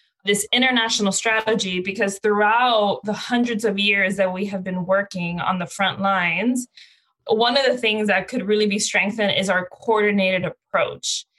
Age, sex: 20-39, female